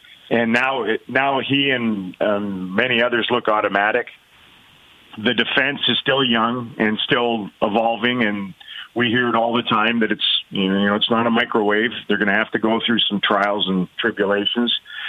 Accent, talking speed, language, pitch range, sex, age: American, 180 wpm, English, 105-130 Hz, male, 40-59